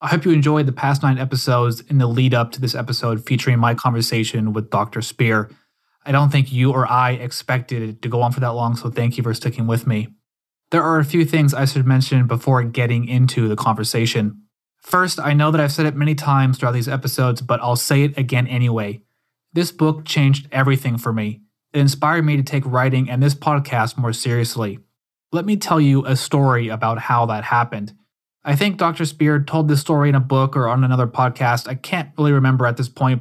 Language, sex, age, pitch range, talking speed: English, male, 20-39, 120-145 Hz, 220 wpm